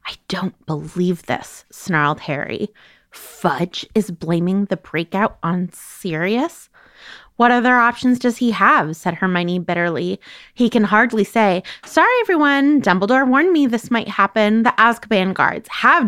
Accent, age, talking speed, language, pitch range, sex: American, 20-39, 140 wpm, English, 185-240 Hz, female